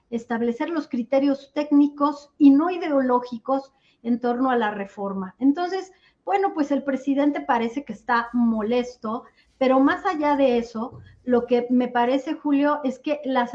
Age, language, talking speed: 40-59, Spanish, 150 wpm